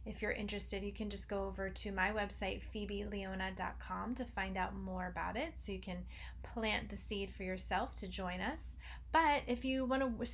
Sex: female